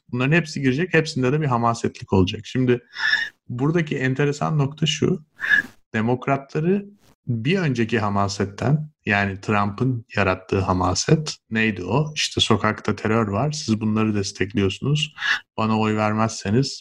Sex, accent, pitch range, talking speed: male, native, 105-140 Hz, 120 wpm